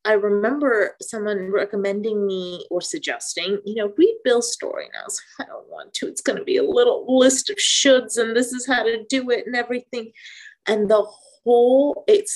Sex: female